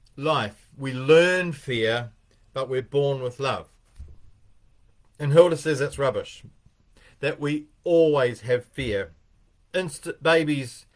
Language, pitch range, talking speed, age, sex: English, 105-155 Hz, 115 wpm, 40-59, male